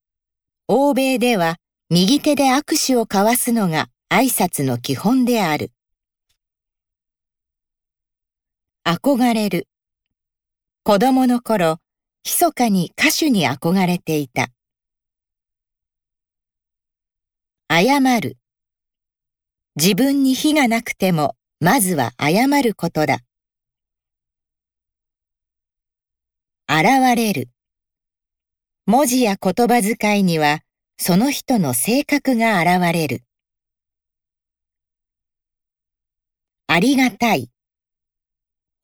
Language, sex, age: Japanese, female, 50-69